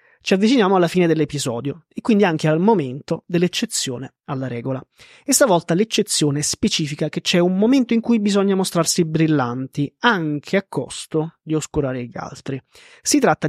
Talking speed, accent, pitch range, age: 155 wpm, native, 145-185 Hz, 20-39